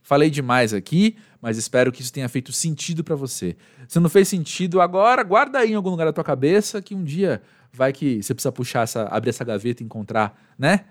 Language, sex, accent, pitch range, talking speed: Portuguese, male, Brazilian, 130-185 Hz, 220 wpm